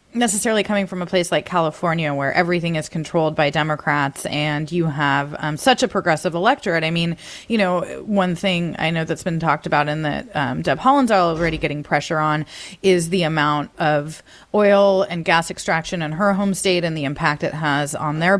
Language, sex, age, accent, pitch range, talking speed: English, female, 30-49, American, 160-200 Hz, 200 wpm